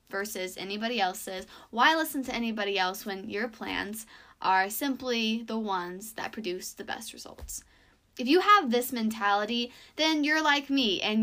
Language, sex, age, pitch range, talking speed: English, female, 10-29, 210-275 Hz, 160 wpm